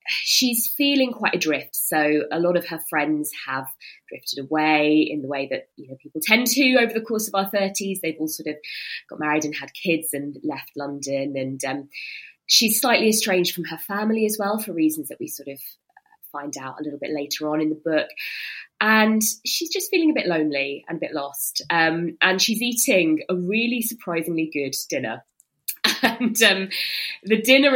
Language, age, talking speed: English, 20-39, 195 wpm